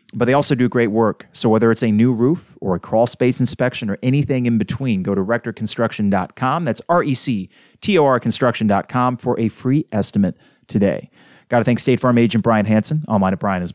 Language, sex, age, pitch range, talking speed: English, male, 30-49, 100-130 Hz, 190 wpm